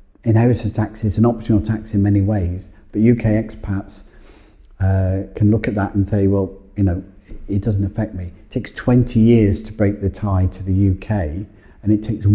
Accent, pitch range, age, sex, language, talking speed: British, 95-105 Hz, 50-69, male, English, 195 wpm